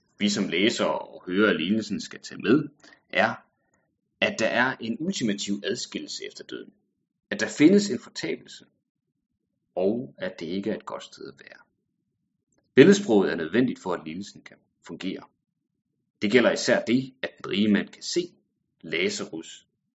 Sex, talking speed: male, 155 wpm